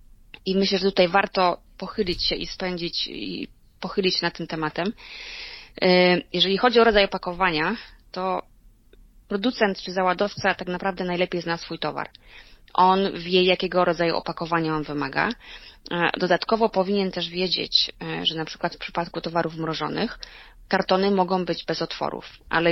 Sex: female